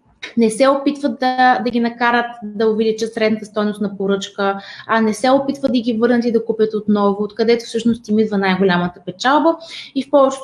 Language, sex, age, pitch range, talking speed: Bulgarian, female, 20-39, 195-250 Hz, 195 wpm